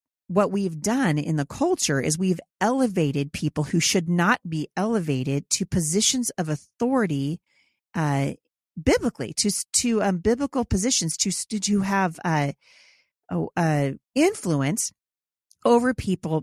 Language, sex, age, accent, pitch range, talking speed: English, female, 40-59, American, 165-225 Hz, 125 wpm